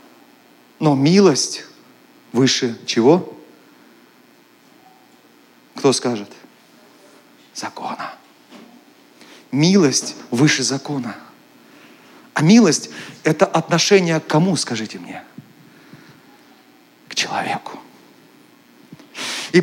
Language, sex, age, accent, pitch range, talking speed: Russian, male, 40-59, native, 155-225 Hz, 65 wpm